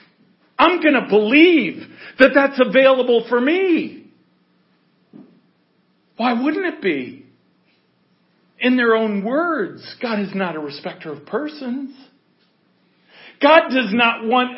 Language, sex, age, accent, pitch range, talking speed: English, male, 50-69, American, 210-275 Hz, 115 wpm